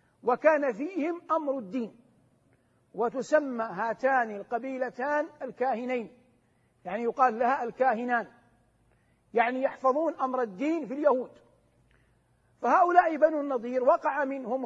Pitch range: 245-315 Hz